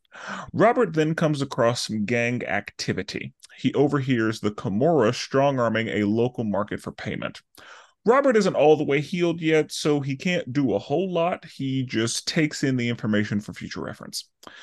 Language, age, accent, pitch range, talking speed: English, 30-49, American, 115-150 Hz, 165 wpm